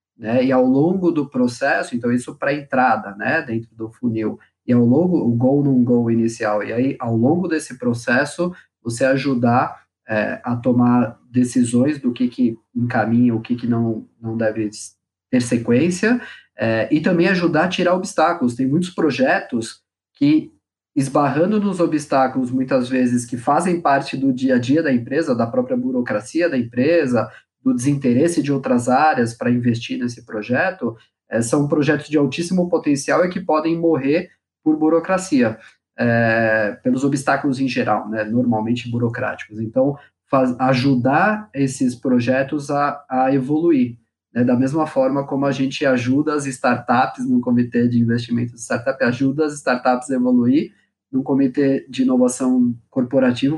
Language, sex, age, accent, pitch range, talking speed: Portuguese, male, 20-39, Brazilian, 120-155 Hz, 150 wpm